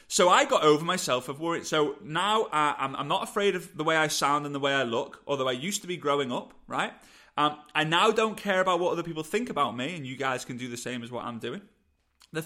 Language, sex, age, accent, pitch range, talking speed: English, male, 30-49, British, 145-205 Hz, 270 wpm